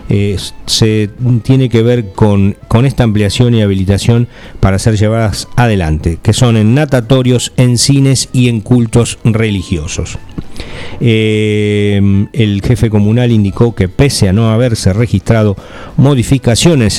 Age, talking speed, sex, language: 50-69, 130 wpm, male, English